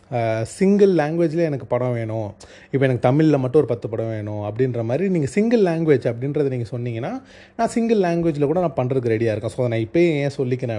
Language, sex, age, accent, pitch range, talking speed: Tamil, male, 30-49, native, 120-165 Hz, 190 wpm